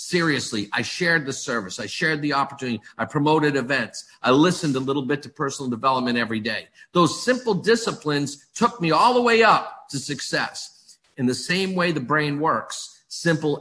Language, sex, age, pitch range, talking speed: English, male, 50-69, 135-190 Hz, 180 wpm